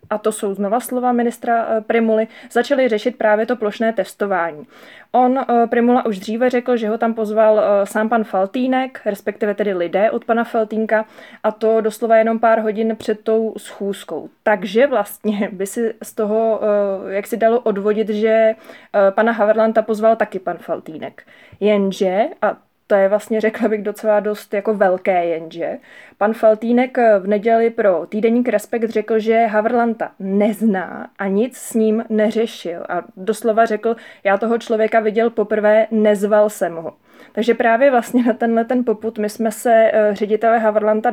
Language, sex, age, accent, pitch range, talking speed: Czech, female, 20-39, native, 210-230 Hz, 155 wpm